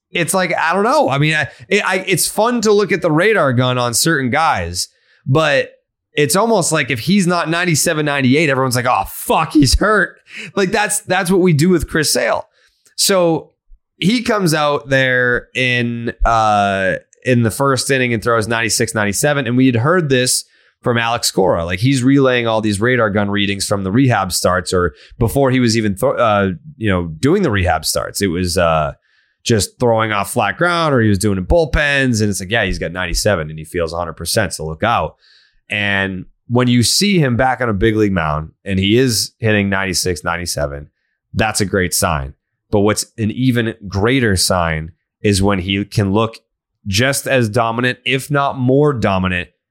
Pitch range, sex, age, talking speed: 100-135 Hz, male, 20-39, 195 wpm